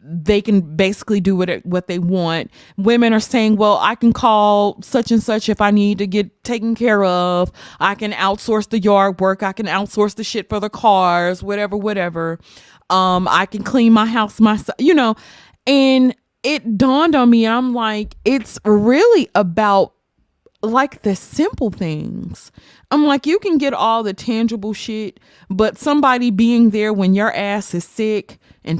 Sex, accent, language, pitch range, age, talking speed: female, American, English, 190-225 Hz, 30-49, 175 wpm